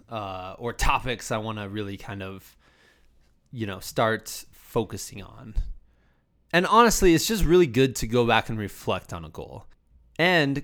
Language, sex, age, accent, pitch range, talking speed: English, male, 20-39, American, 105-135 Hz, 165 wpm